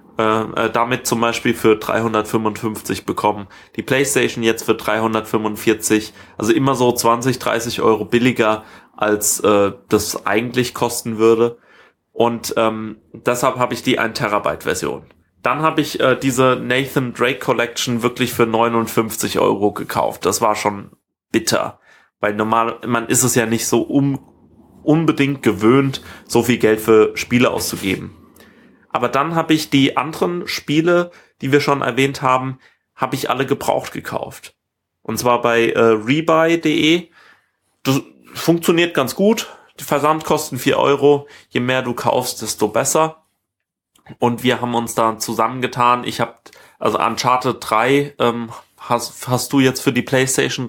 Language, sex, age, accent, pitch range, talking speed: German, male, 30-49, German, 115-140 Hz, 150 wpm